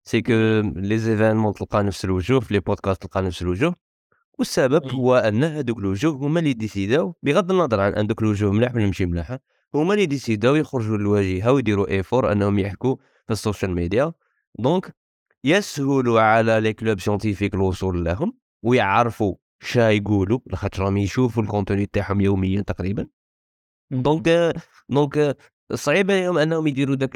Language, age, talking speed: Arabic, 20-39, 145 wpm